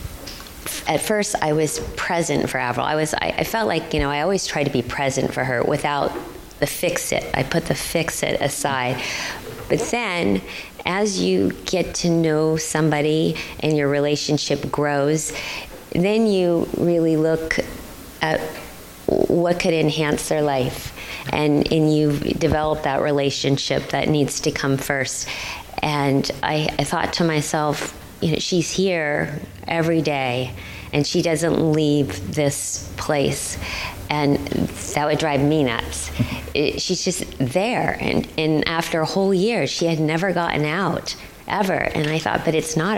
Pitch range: 140-170 Hz